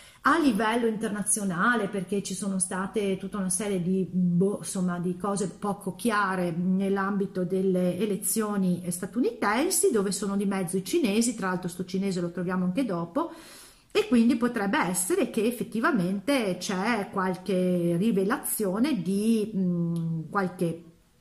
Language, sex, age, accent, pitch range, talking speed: Italian, female, 40-59, native, 185-235 Hz, 135 wpm